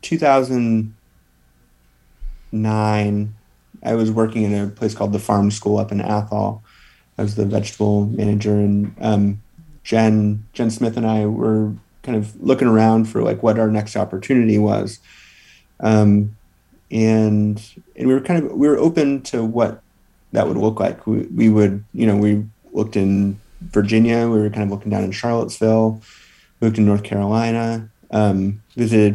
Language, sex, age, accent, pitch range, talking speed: English, male, 30-49, American, 100-110 Hz, 160 wpm